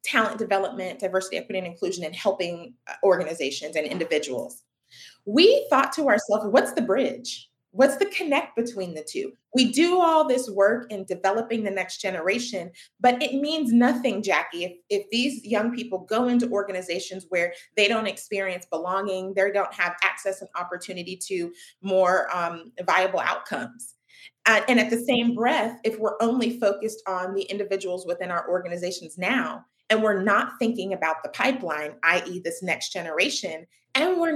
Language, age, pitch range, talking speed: English, 30-49, 180-245 Hz, 160 wpm